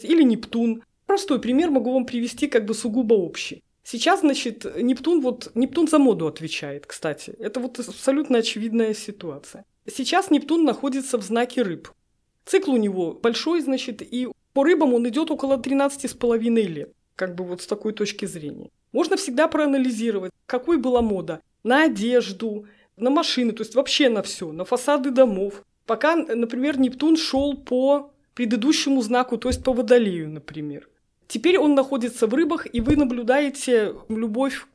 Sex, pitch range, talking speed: female, 220-280 Hz, 155 wpm